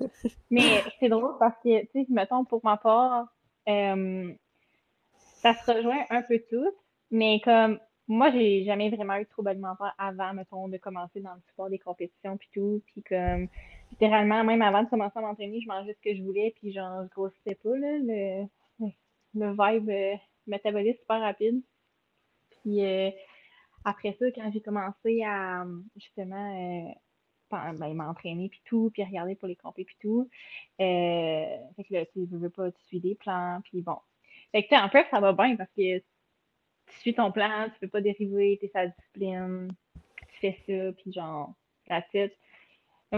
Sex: female